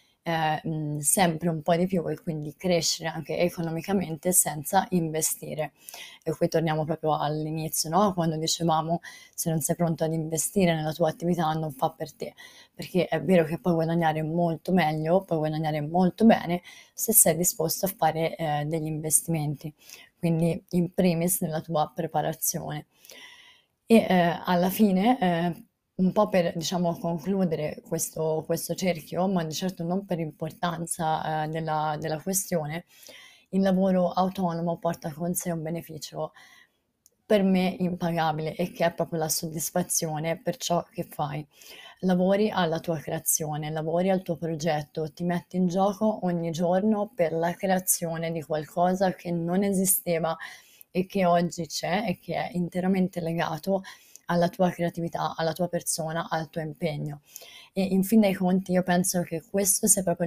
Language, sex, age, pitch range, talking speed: Italian, female, 20-39, 160-185 Hz, 155 wpm